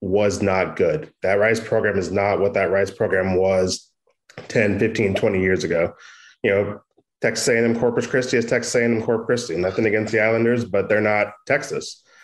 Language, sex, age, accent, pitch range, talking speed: English, male, 20-39, American, 100-110 Hz, 180 wpm